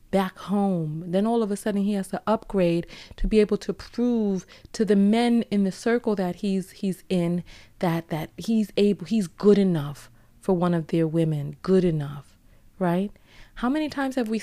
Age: 20-39